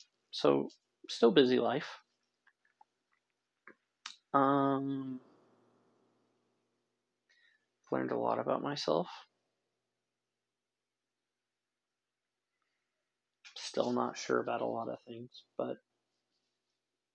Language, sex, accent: English, male, American